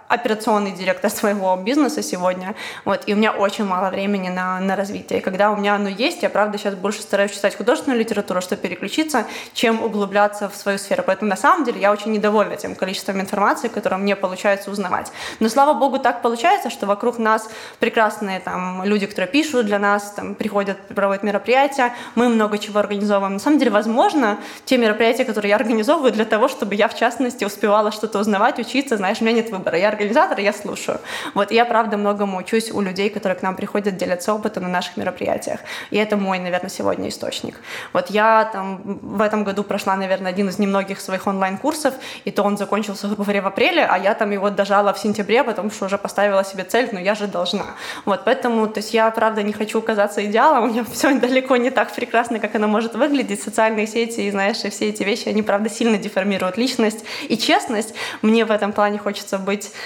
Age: 20-39